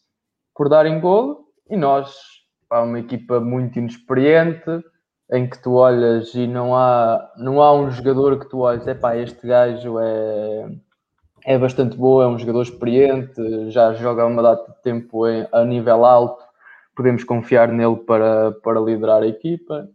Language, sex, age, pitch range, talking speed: Portuguese, male, 20-39, 115-130 Hz, 165 wpm